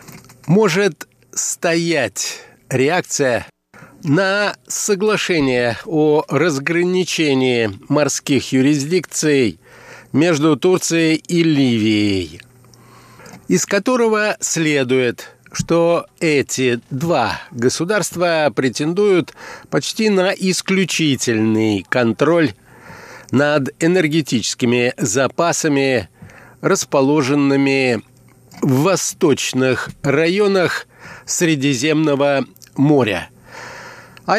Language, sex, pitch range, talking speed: Russian, male, 130-170 Hz, 60 wpm